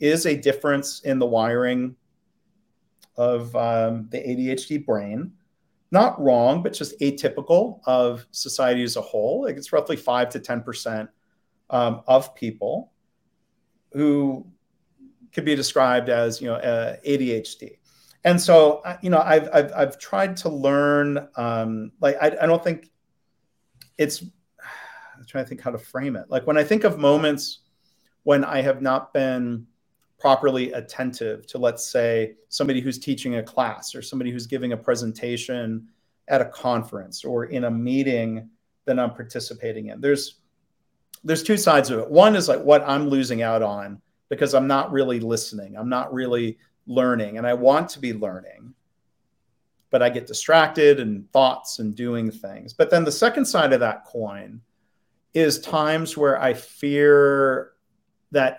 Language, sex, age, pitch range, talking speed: English, male, 40-59, 120-150 Hz, 160 wpm